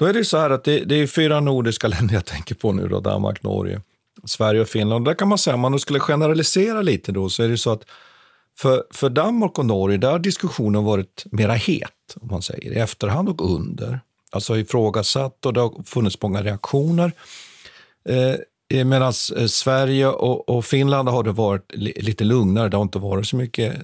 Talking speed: 195 wpm